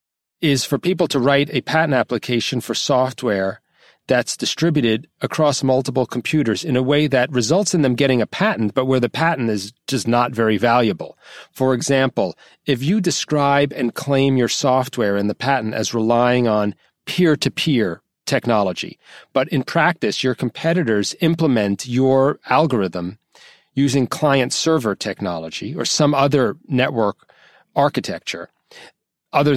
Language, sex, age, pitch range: English, male, 40-59, 120-155 Hz